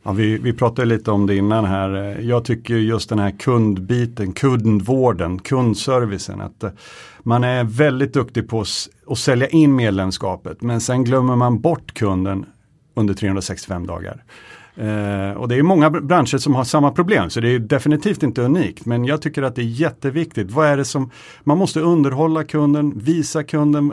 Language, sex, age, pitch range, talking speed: Swedish, male, 50-69, 110-150 Hz, 170 wpm